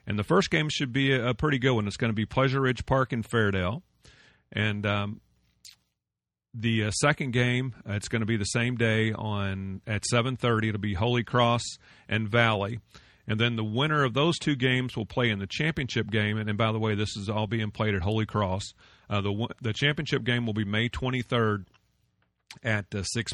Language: English